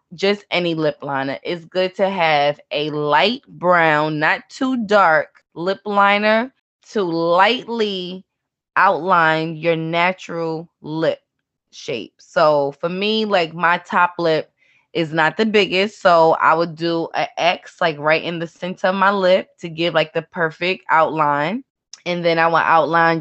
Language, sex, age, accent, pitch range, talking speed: English, female, 20-39, American, 160-195 Hz, 155 wpm